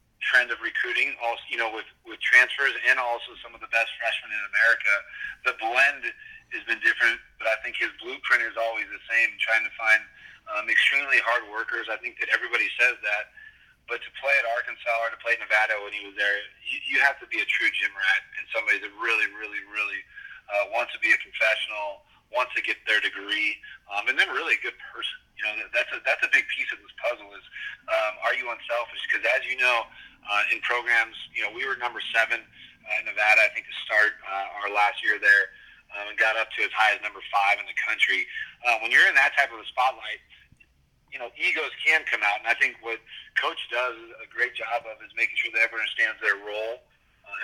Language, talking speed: English, 225 wpm